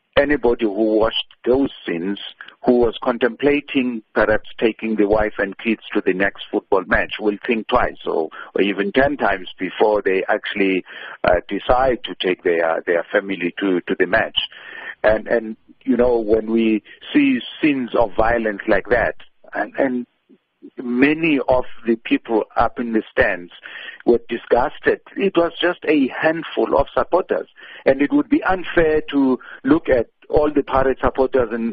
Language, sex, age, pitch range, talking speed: English, male, 50-69, 120-175 Hz, 160 wpm